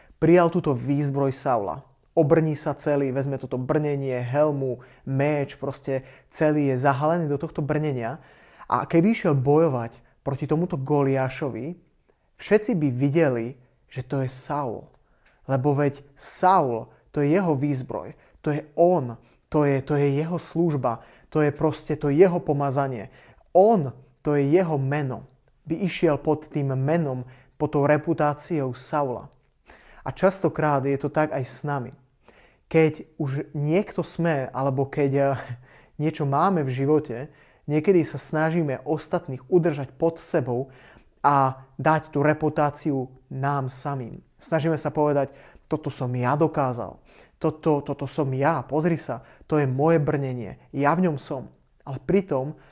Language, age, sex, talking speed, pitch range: Slovak, 30-49, male, 145 wpm, 135-160 Hz